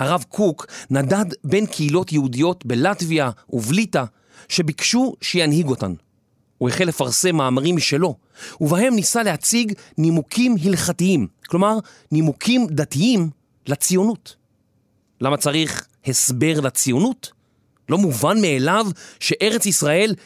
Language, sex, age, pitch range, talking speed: Hebrew, male, 40-59, 135-195 Hz, 100 wpm